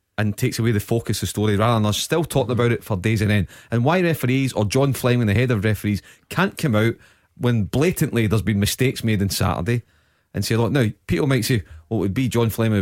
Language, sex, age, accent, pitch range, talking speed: English, male, 30-49, British, 100-125 Hz, 250 wpm